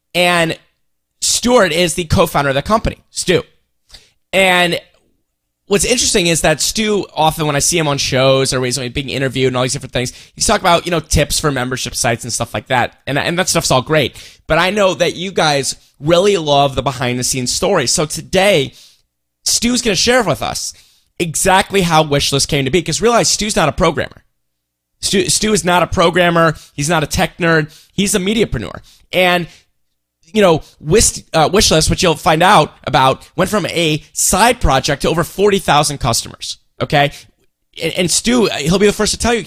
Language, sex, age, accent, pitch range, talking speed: English, male, 20-39, American, 130-180 Hz, 195 wpm